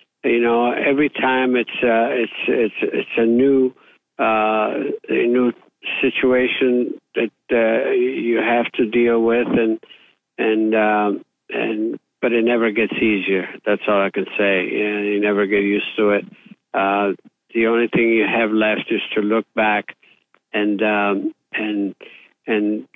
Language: English